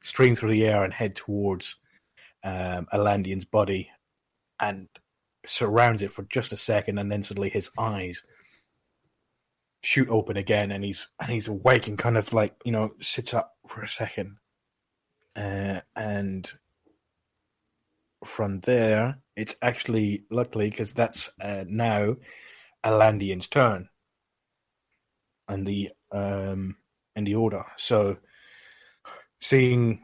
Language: English